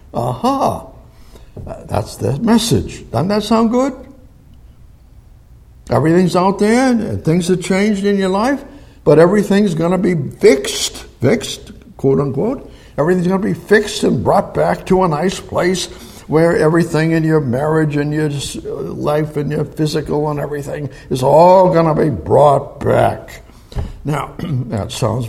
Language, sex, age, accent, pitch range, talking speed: English, male, 60-79, American, 125-180 Hz, 150 wpm